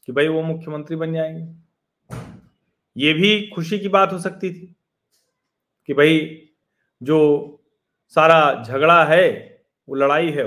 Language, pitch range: Hindi, 145-190 Hz